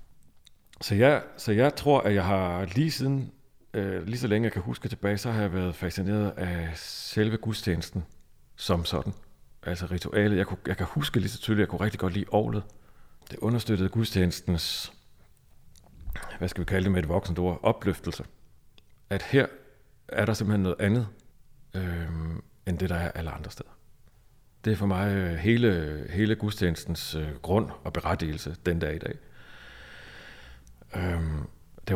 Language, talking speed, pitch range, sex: Danish, 165 wpm, 85-105 Hz, male